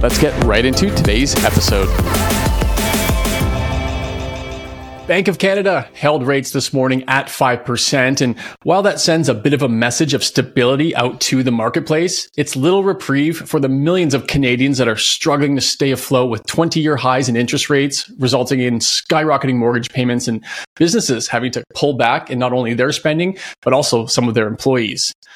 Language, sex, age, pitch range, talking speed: English, male, 30-49, 125-155 Hz, 170 wpm